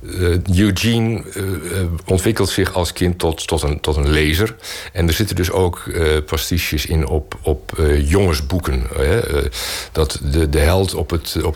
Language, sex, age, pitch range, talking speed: Dutch, male, 60-79, 80-100 Hz, 180 wpm